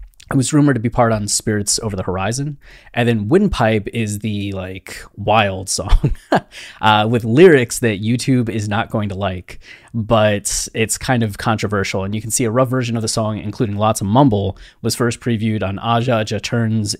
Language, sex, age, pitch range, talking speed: English, male, 20-39, 100-120 Hz, 190 wpm